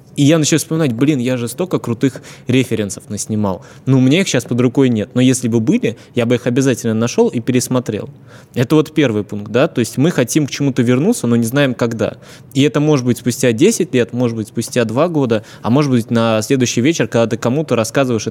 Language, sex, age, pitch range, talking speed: Russian, male, 20-39, 115-140 Hz, 225 wpm